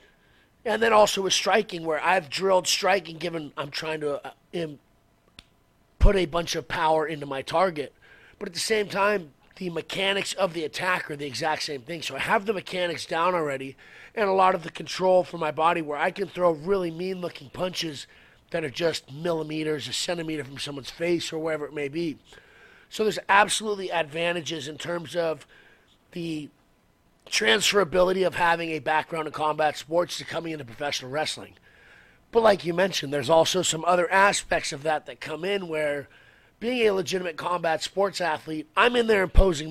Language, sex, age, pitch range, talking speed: English, male, 30-49, 155-190 Hz, 180 wpm